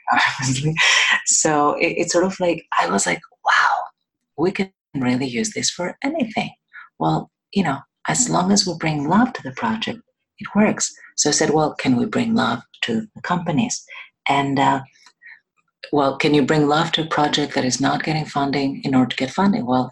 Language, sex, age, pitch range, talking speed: English, female, 40-59, 130-220 Hz, 185 wpm